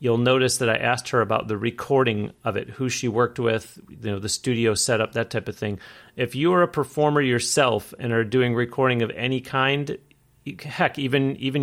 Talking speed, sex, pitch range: 205 wpm, male, 115-135 Hz